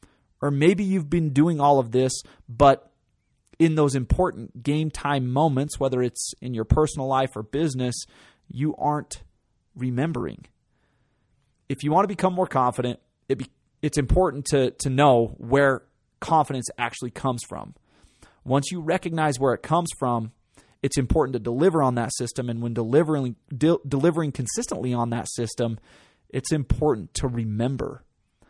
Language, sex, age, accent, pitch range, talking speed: English, male, 30-49, American, 120-150 Hz, 150 wpm